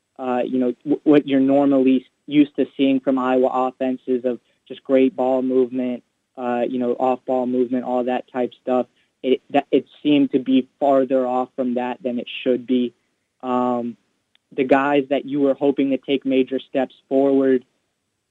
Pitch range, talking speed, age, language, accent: 125-145 Hz, 175 wpm, 20-39, English, American